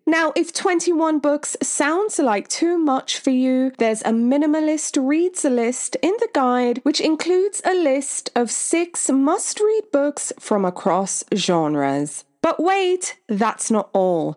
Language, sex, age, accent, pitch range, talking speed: English, female, 20-39, British, 240-330 Hz, 140 wpm